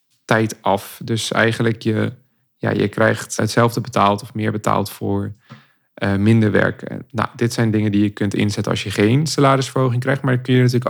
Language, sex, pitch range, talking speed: Dutch, male, 105-125 Hz, 205 wpm